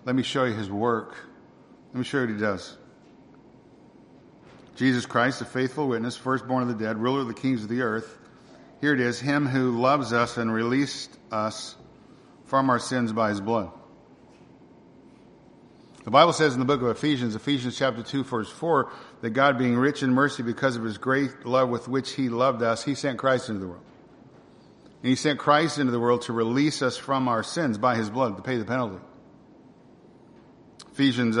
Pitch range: 120-135 Hz